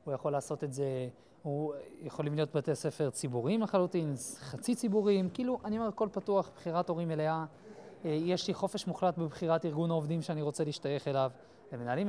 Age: 20-39